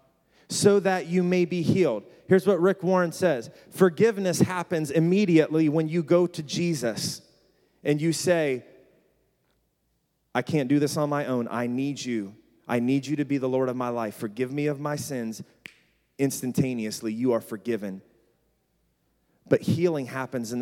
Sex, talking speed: male, 160 wpm